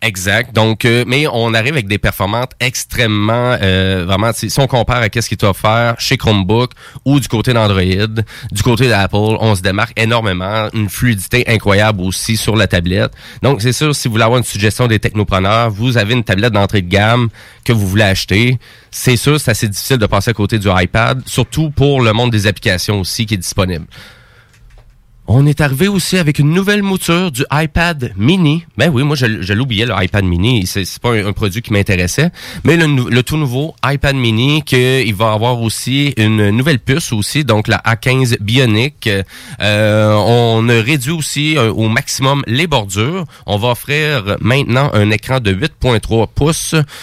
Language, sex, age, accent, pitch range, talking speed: French, male, 30-49, Canadian, 105-130 Hz, 195 wpm